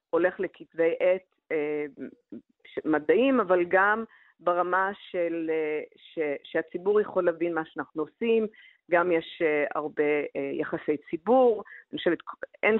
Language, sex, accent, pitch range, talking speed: Hebrew, female, native, 155-195 Hz, 110 wpm